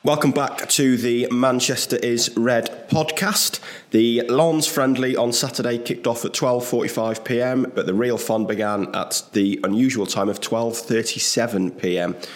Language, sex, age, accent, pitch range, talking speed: English, male, 20-39, British, 105-120 Hz, 130 wpm